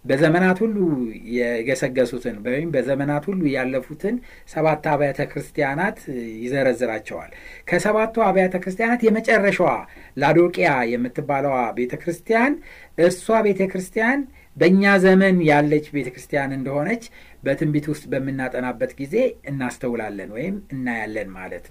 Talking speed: 90 wpm